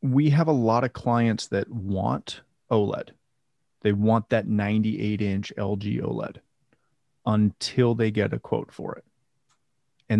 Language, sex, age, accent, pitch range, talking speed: English, male, 30-49, American, 105-140 Hz, 140 wpm